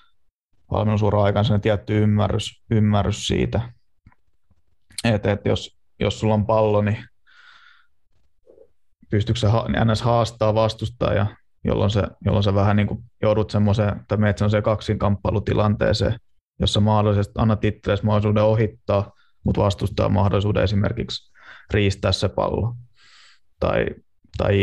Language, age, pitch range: Finnish, 20-39, 100-110 Hz